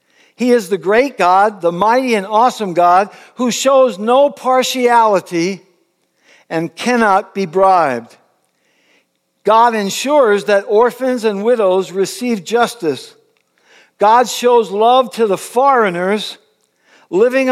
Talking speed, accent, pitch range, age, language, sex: 115 wpm, American, 170-235 Hz, 60-79, English, male